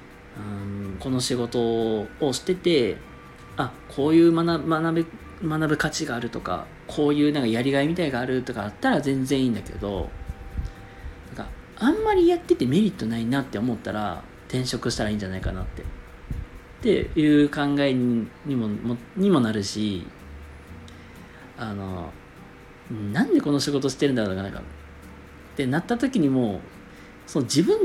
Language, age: Japanese, 40-59